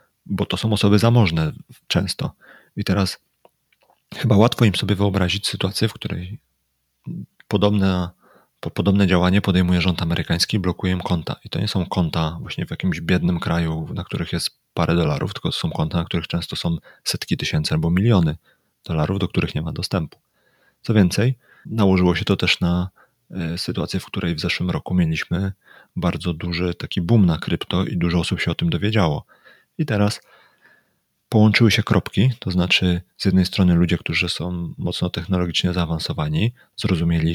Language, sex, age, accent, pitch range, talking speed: Polish, male, 30-49, native, 85-105 Hz, 165 wpm